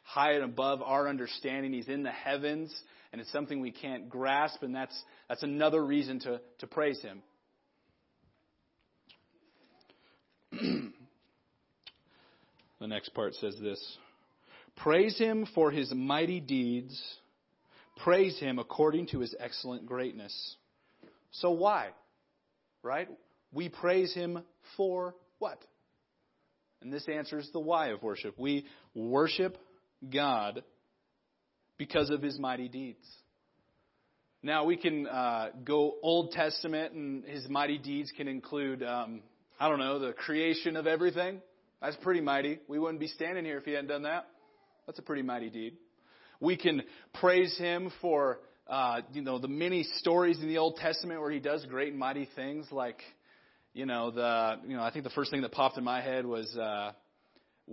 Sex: male